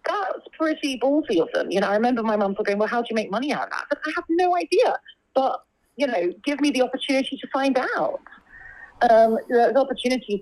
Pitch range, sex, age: 195-265 Hz, female, 30-49